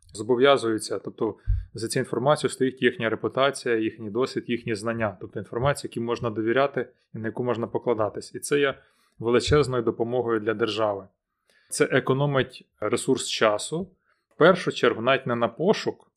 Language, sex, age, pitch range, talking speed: Ukrainian, male, 20-39, 115-140 Hz, 150 wpm